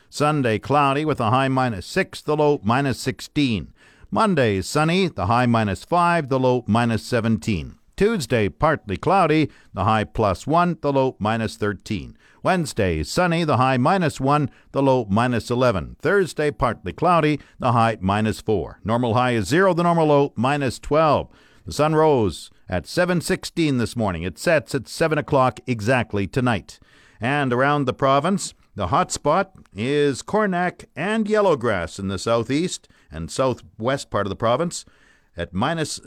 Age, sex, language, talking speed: 50-69, male, English, 155 wpm